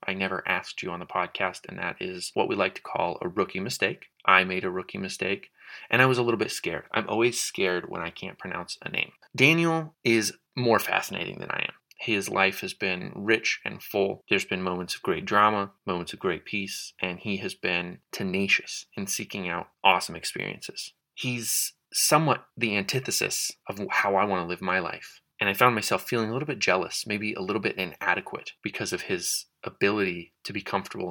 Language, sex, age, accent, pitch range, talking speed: English, male, 30-49, American, 95-115 Hz, 205 wpm